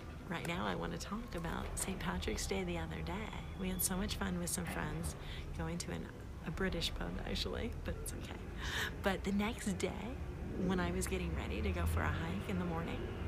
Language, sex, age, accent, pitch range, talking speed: English, female, 40-59, American, 75-90 Hz, 210 wpm